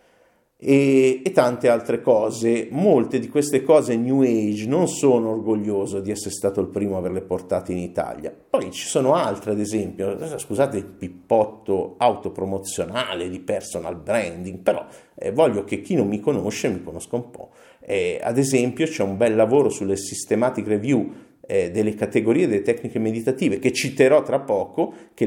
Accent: native